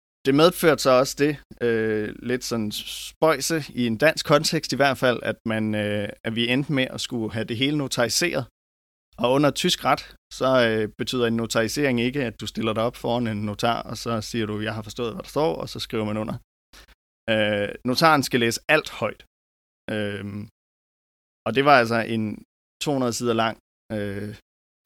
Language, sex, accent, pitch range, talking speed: Danish, male, native, 105-125 Hz, 190 wpm